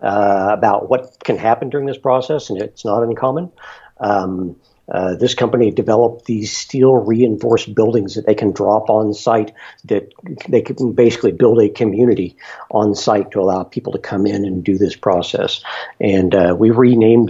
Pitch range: 95-115 Hz